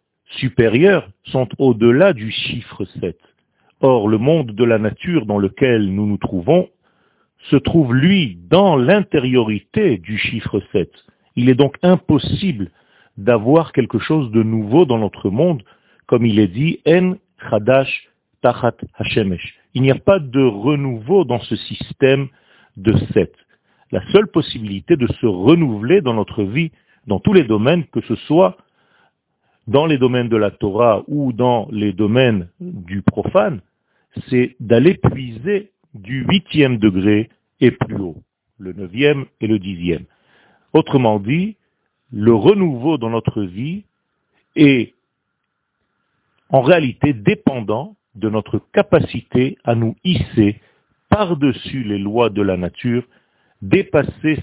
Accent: French